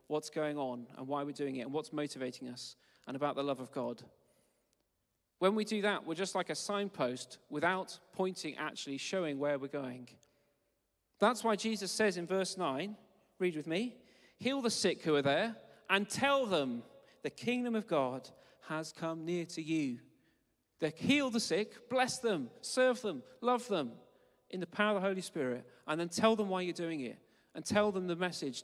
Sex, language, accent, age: male, English, British, 40-59